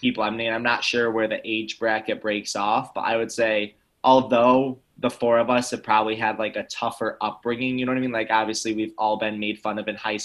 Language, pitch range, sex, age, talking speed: English, 110-125 Hz, male, 20-39, 250 wpm